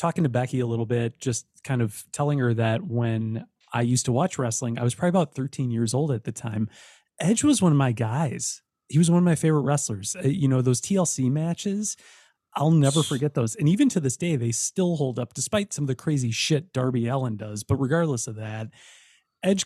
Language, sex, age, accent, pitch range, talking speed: English, male, 30-49, American, 120-160 Hz, 225 wpm